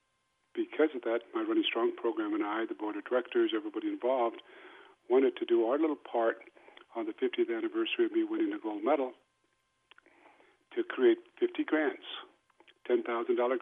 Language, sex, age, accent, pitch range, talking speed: English, male, 50-69, American, 330-365 Hz, 160 wpm